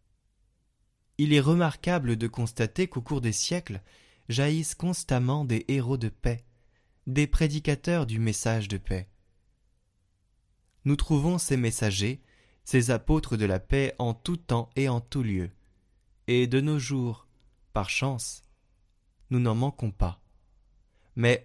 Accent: French